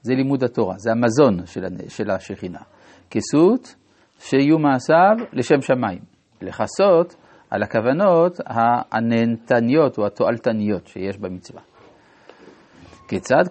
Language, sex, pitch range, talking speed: Hebrew, male, 115-160 Hz, 95 wpm